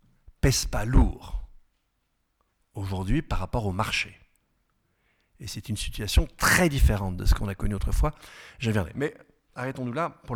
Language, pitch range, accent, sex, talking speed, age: French, 105-170 Hz, French, male, 140 wpm, 50-69